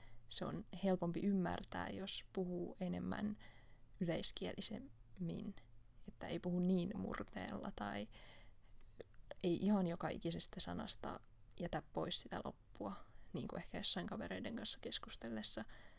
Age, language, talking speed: 20-39, Finnish, 115 wpm